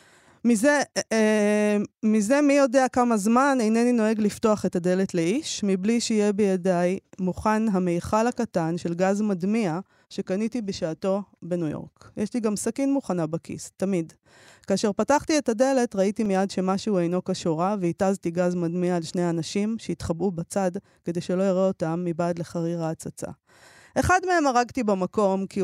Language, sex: Hebrew, female